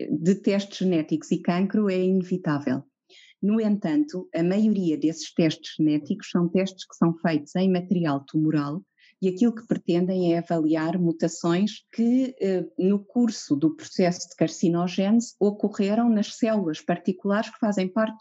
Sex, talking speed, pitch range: female, 140 wpm, 170-215 Hz